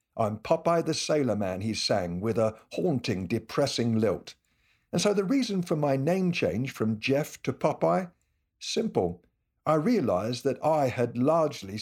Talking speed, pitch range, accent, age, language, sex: 155 wpm, 115-155 Hz, British, 60-79, English, male